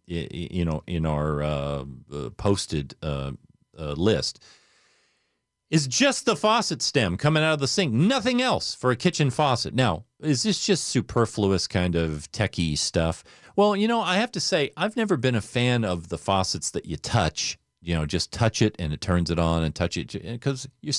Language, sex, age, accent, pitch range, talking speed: English, male, 40-59, American, 85-140 Hz, 190 wpm